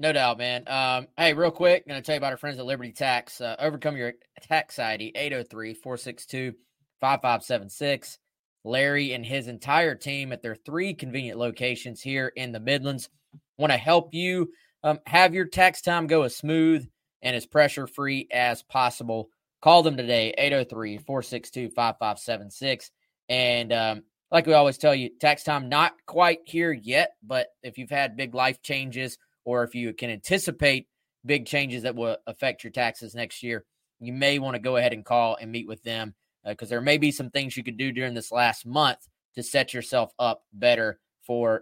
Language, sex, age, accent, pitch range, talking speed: English, male, 20-39, American, 120-150 Hz, 180 wpm